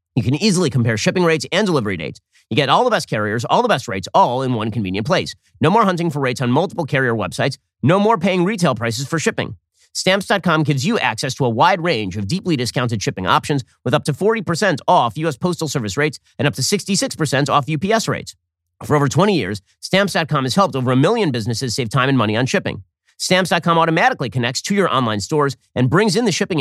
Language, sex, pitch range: English, male, 115-165 Hz